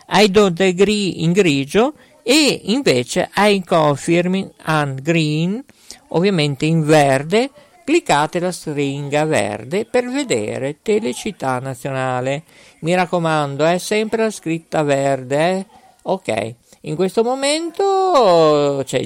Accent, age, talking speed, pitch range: native, 50-69, 105 wpm, 145-210 Hz